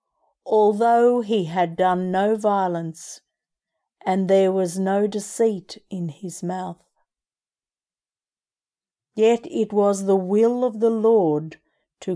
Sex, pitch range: female, 180-220 Hz